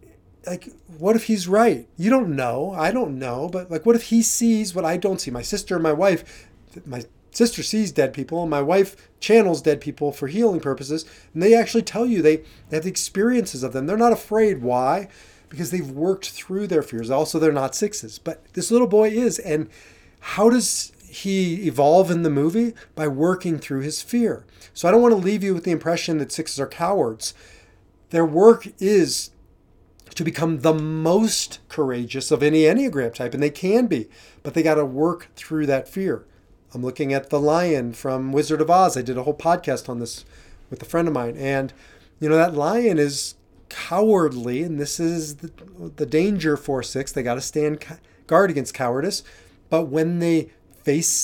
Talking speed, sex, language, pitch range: 200 wpm, male, English, 135-185 Hz